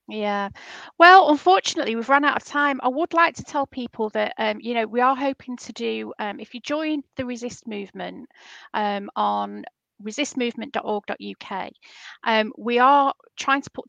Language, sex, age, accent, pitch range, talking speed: English, female, 30-49, British, 190-245 Hz, 170 wpm